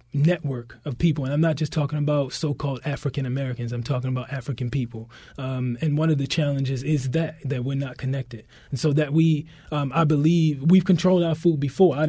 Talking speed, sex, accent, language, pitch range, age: 215 wpm, male, American, English, 135-160 Hz, 20-39